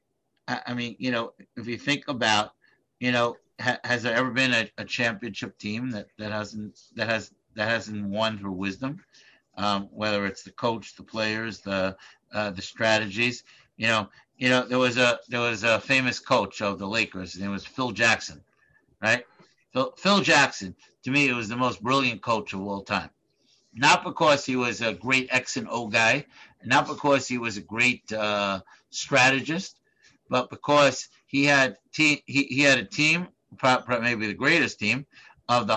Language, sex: English, male